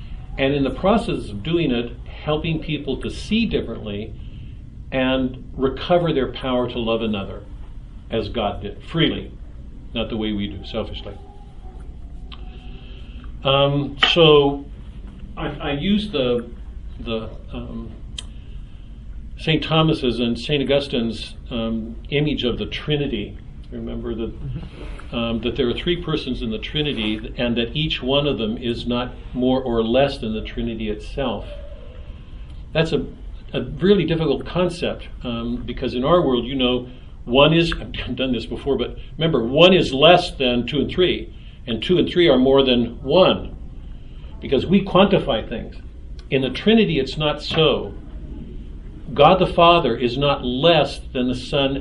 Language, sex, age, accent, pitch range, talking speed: English, male, 50-69, American, 110-145 Hz, 150 wpm